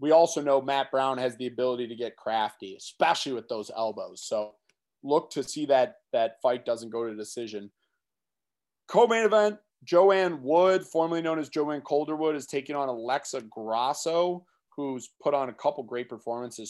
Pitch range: 125-175 Hz